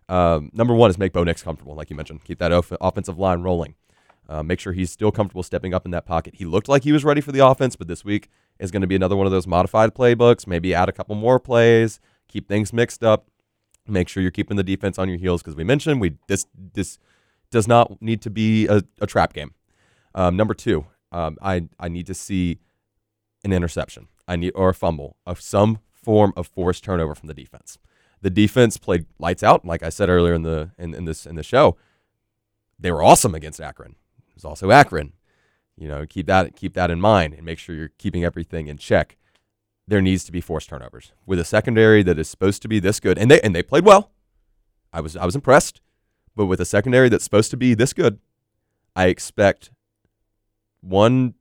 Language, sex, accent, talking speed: English, male, American, 225 wpm